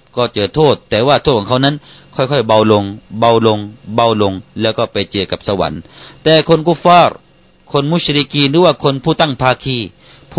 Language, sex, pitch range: Thai, male, 110-145 Hz